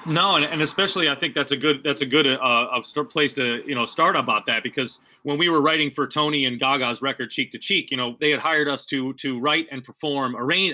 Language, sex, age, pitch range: English, male, 30-49, 125-150 Hz